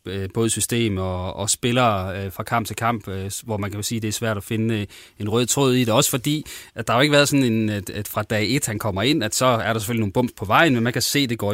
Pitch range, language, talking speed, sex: 110-130 Hz, Danish, 290 wpm, male